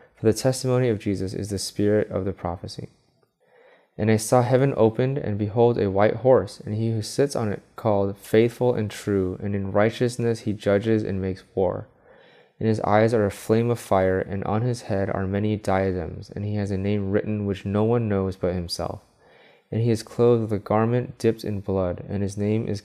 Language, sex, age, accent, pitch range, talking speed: English, male, 20-39, American, 95-110 Hz, 210 wpm